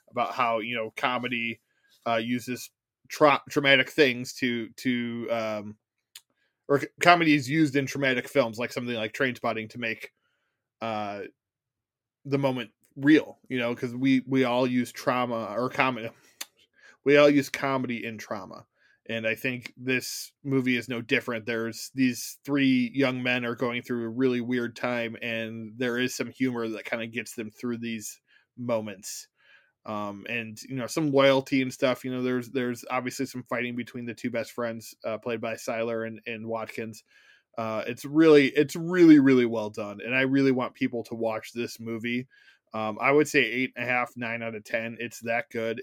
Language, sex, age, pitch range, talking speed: English, male, 20-39, 115-130 Hz, 180 wpm